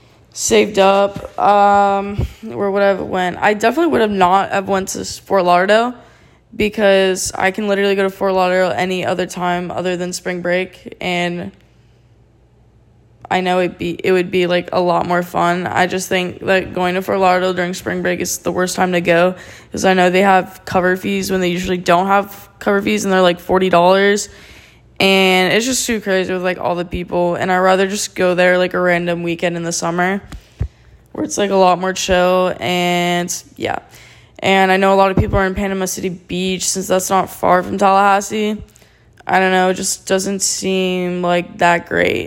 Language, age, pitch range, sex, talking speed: English, 10-29, 175-195 Hz, female, 195 wpm